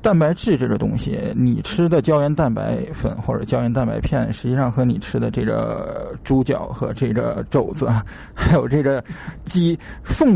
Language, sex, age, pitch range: Chinese, male, 20-39, 120-145 Hz